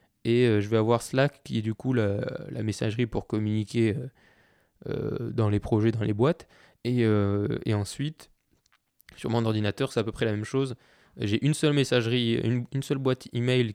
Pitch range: 110-130 Hz